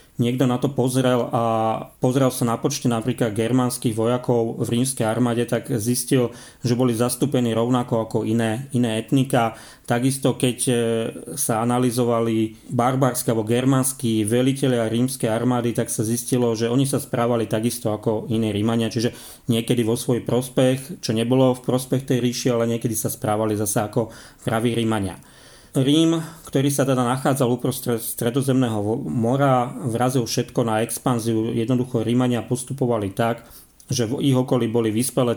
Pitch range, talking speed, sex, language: 115-130 Hz, 150 wpm, male, Slovak